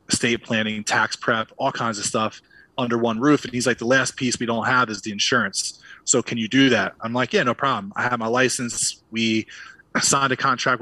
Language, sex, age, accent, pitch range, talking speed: English, male, 20-39, American, 110-125 Hz, 225 wpm